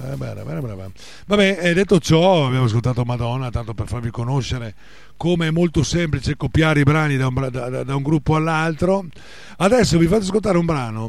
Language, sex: Italian, male